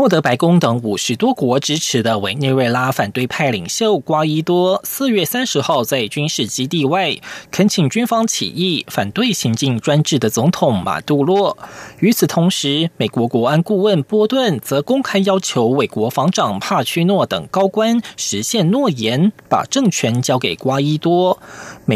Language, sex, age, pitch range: German, male, 20-39, 130-195 Hz